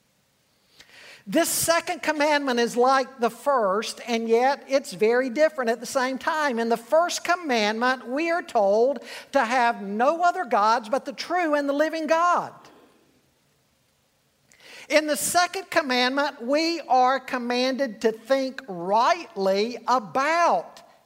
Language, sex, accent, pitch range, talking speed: English, male, American, 230-295 Hz, 130 wpm